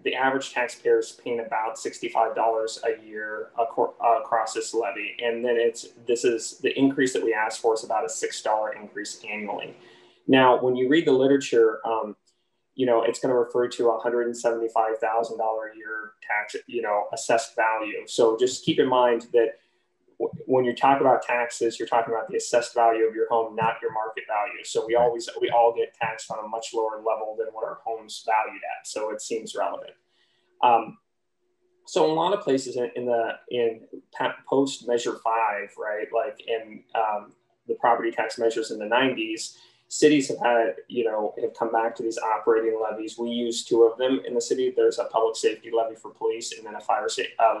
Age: 20-39